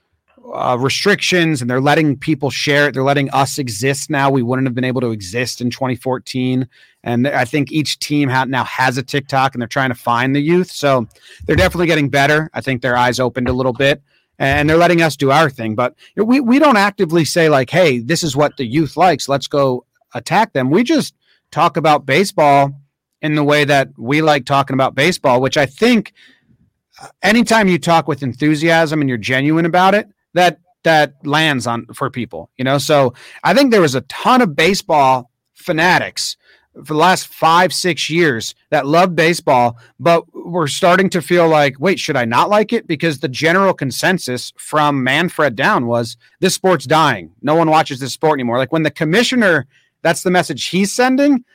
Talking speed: 195 wpm